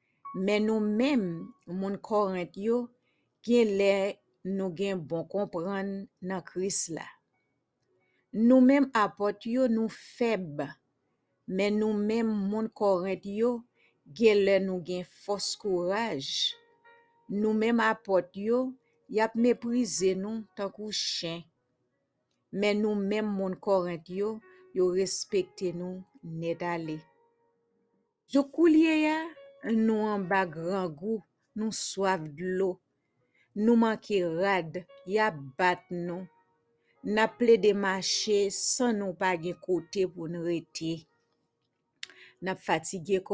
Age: 50-69